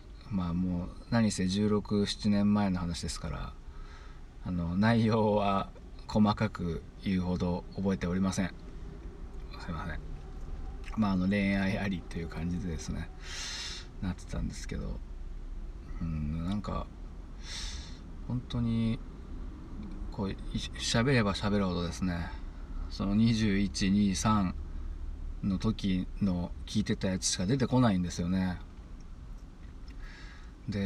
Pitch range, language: 75-100 Hz, Japanese